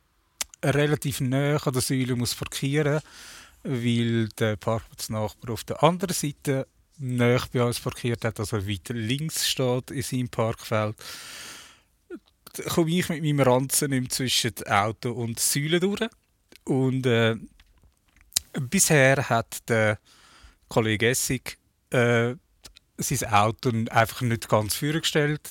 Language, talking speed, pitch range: German, 120 wpm, 110-135 Hz